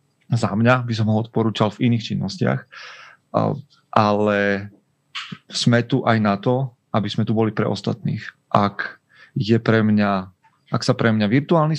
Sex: male